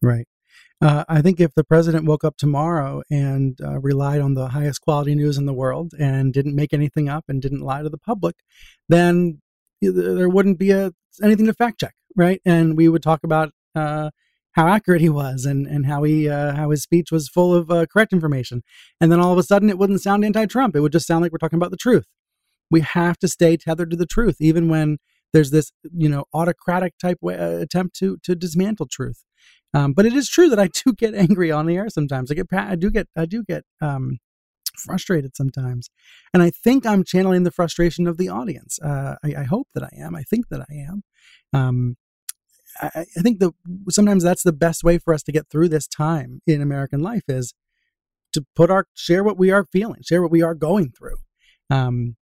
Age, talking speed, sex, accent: 30-49, 220 wpm, male, American